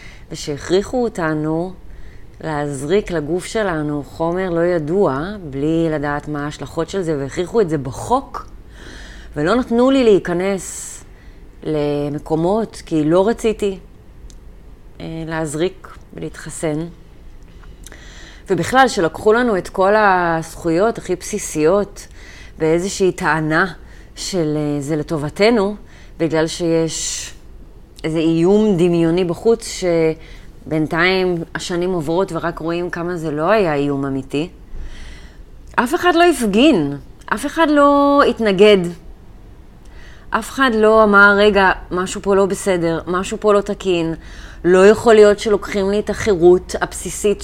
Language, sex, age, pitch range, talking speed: Hebrew, female, 30-49, 155-200 Hz, 110 wpm